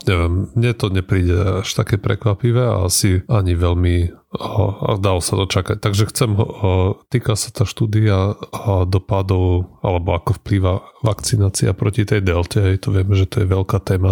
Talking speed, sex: 155 wpm, male